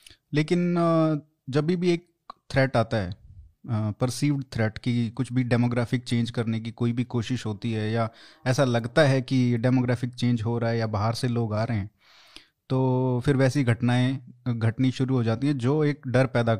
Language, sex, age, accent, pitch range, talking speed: Hindi, male, 20-39, native, 115-135 Hz, 190 wpm